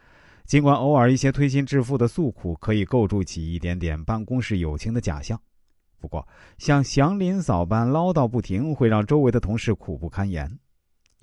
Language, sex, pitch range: Chinese, male, 85-130 Hz